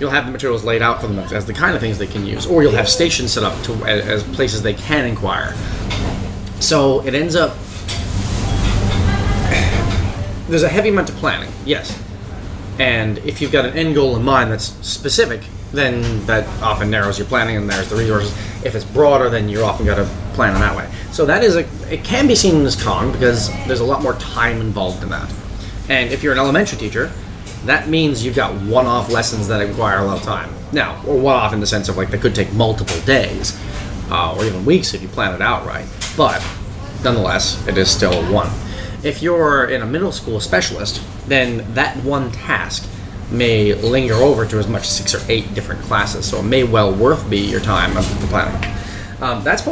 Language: English